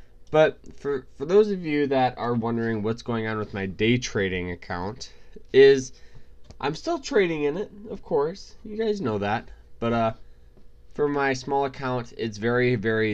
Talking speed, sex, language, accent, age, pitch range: 175 wpm, male, English, American, 20-39, 85-125 Hz